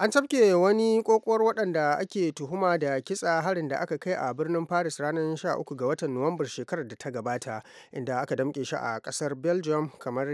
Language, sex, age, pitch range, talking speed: English, male, 30-49, 135-170 Hz, 155 wpm